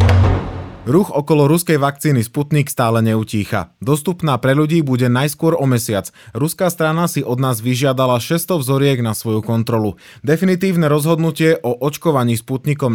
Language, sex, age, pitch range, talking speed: Slovak, male, 20-39, 115-155 Hz, 140 wpm